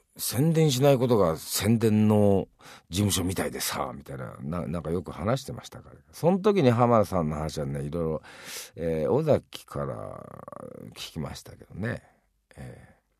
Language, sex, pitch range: Japanese, male, 85-130 Hz